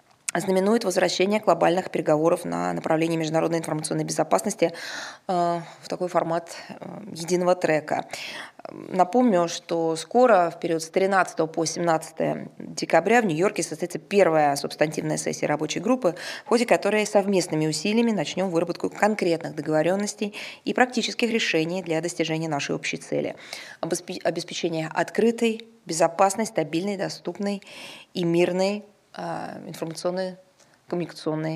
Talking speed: 110 wpm